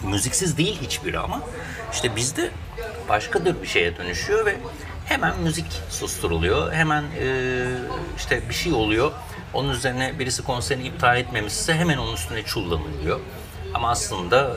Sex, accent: male, native